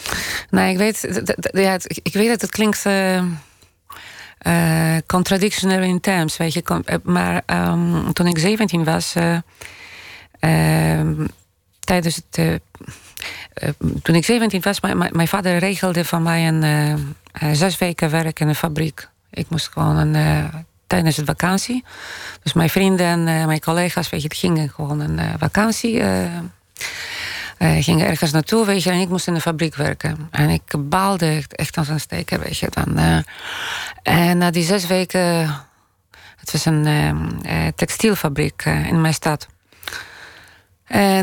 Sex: female